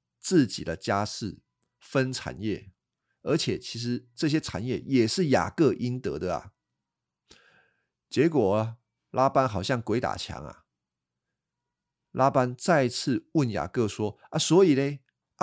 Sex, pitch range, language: male, 105-140 Hz, Chinese